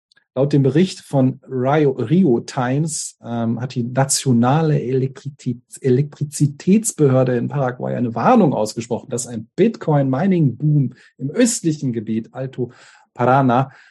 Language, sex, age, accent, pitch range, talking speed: German, male, 40-59, German, 120-150 Hz, 105 wpm